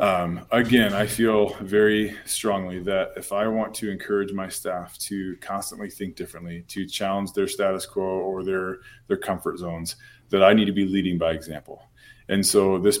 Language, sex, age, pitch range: English, male, 20-39, 95-115 Hz